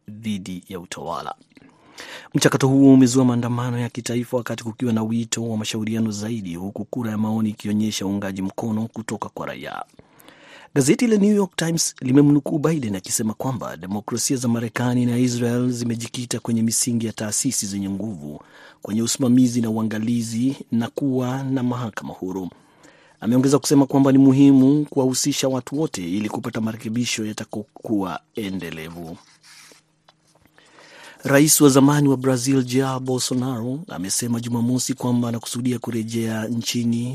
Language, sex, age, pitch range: Swahili, male, 40-59, 110-135 Hz